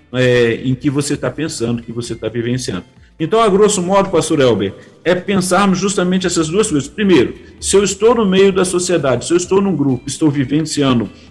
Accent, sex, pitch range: Brazilian, male, 145-185 Hz